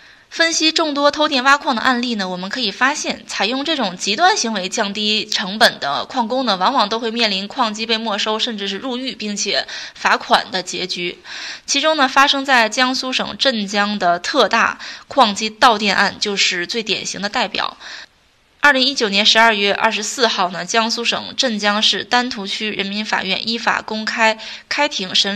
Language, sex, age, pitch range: Chinese, female, 20-39, 195-235 Hz